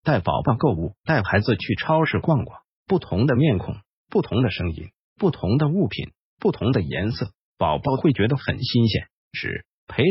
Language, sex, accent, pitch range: Chinese, male, native, 105-160 Hz